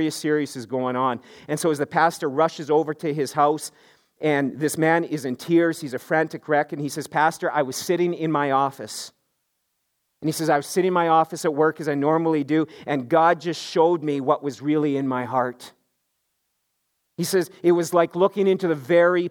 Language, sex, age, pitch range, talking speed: English, male, 40-59, 150-180 Hz, 215 wpm